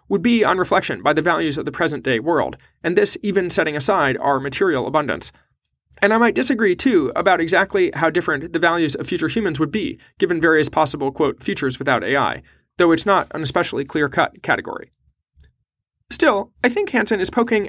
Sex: male